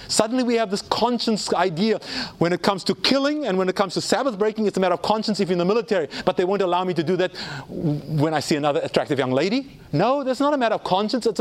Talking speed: 270 wpm